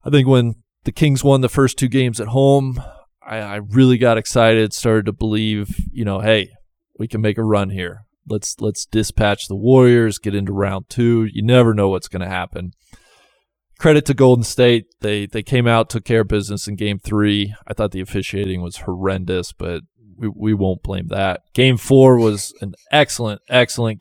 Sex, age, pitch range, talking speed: male, 20-39, 100-120 Hz, 195 wpm